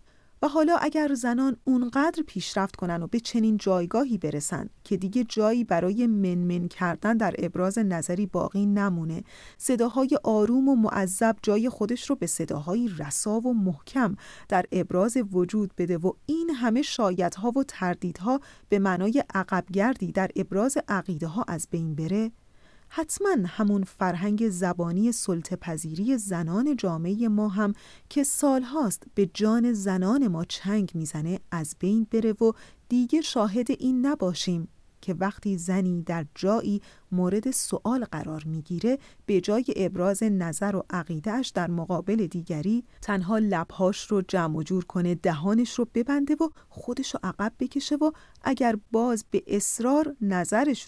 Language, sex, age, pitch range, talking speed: Persian, female, 40-59, 180-240 Hz, 140 wpm